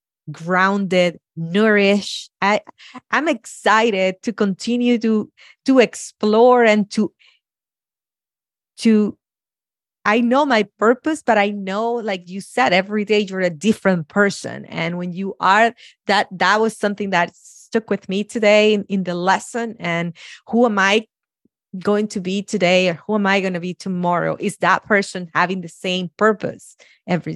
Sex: female